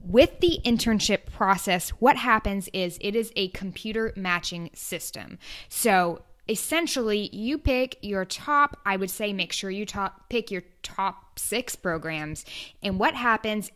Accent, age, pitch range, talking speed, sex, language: American, 10-29, 185-230 Hz, 145 wpm, female, English